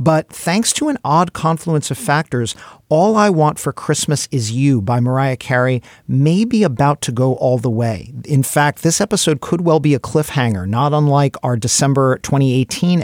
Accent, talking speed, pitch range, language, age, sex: American, 185 wpm, 125-160 Hz, English, 50-69, male